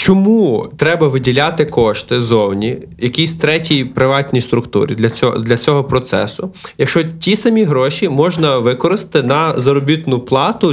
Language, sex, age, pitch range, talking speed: Ukrainian, male, 20-39, 125-155 Hz, 125 wpm